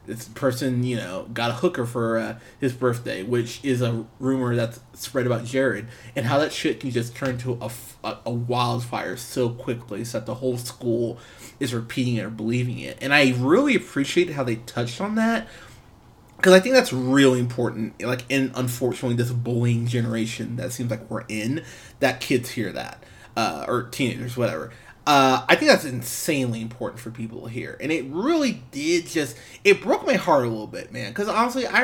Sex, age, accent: male, 20-39, American